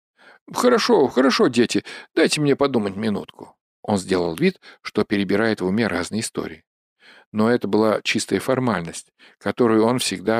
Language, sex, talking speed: Russian, male, 140 wpm